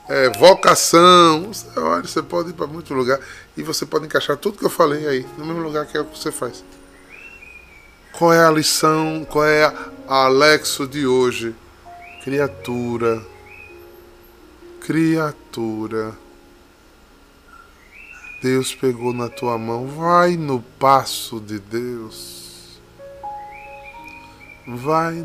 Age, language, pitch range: 20-39, Portuguese, 100-150 Hz